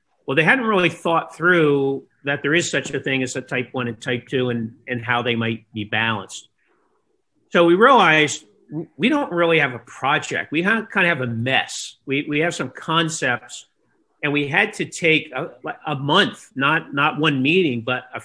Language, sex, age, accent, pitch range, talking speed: English, male, 50-69, American, 130-165 Hz, 200 wpm